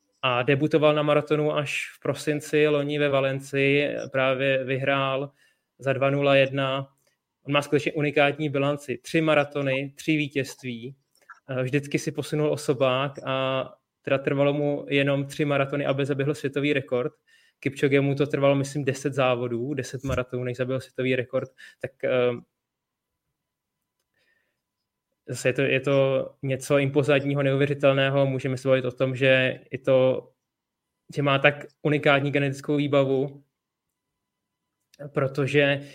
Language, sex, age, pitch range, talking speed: Czech, male, 20-39, 135-145 Hz, 120 wpm